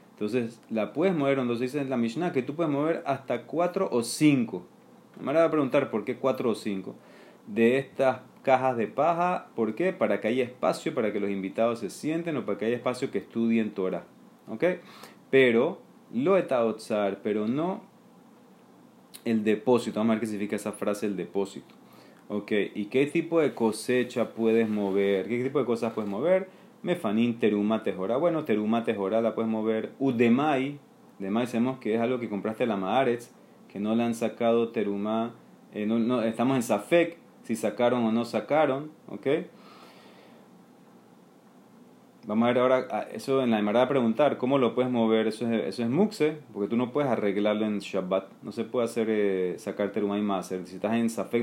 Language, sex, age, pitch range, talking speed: Spanish, male, 30-49, 110-130 Hz, 190 wpm